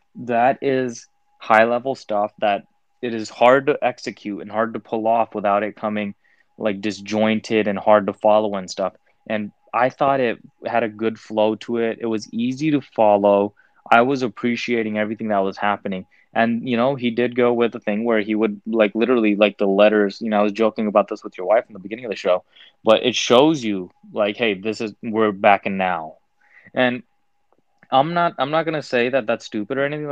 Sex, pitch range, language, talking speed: male, 105-135 Hz, English, 210 wpm